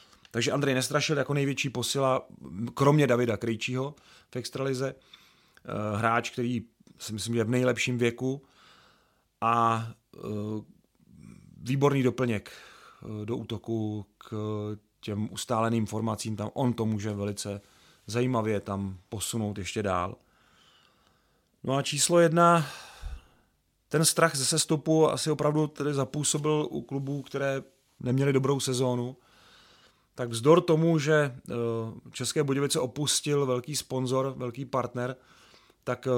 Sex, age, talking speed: male, 30-49, 115 wpm